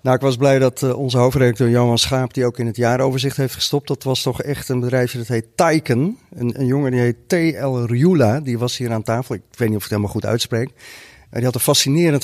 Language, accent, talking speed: Dutch, Dutch, 245 wpm